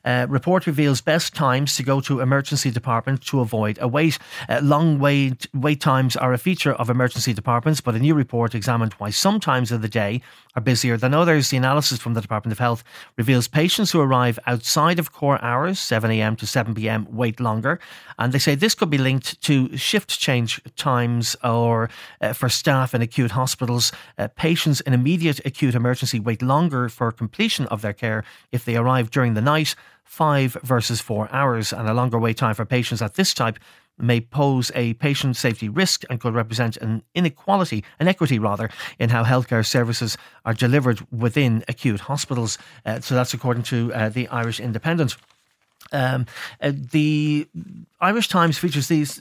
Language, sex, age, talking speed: English, male, 30-49, 185 wpm